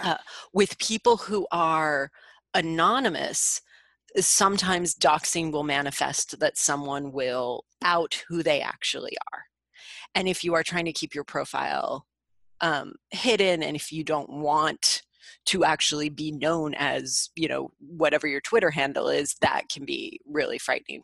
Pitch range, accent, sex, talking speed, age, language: 145-180 Hz, American, female, 150 wpm, 30-49, English